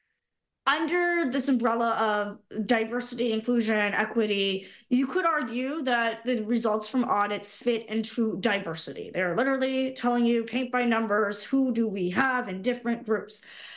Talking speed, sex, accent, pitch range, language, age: 140 wpm, female, American, 195-245 Hz, English, 20-39